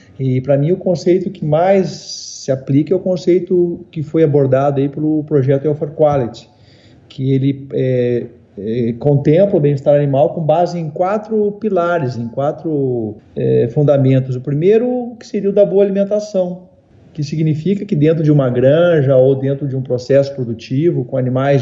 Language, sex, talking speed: Portuguese, male, 165 wpm